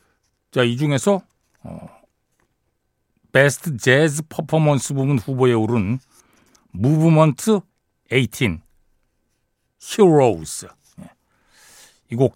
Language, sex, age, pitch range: Korean, male, 60-79, 120-175 Hz